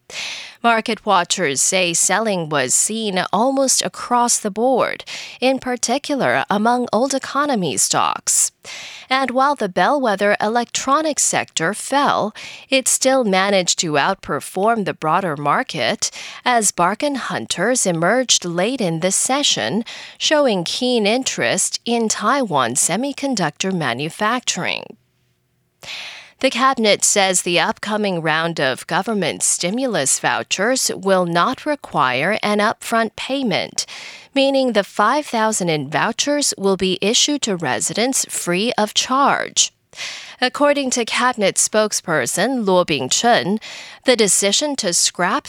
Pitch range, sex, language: 180-260 Hz, female, English